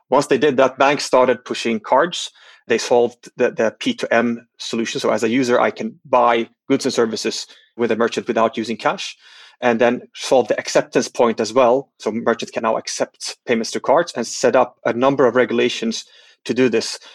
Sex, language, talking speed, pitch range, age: male, English, 195 wpm, 120-130 Hz, 30-49